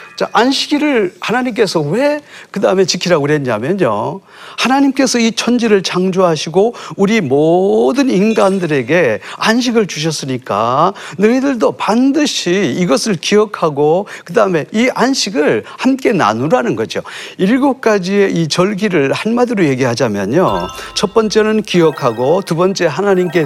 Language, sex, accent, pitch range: Korean, male, native, 165-235 Hz